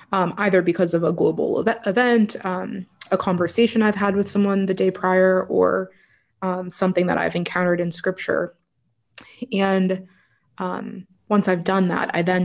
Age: 20-39